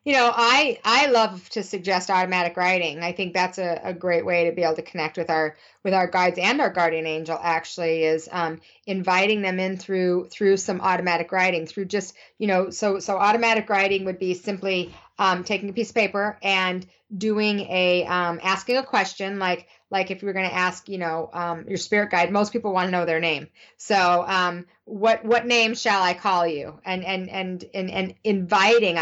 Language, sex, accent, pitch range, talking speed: English, female, American, 180-220 Hz, 210 wpm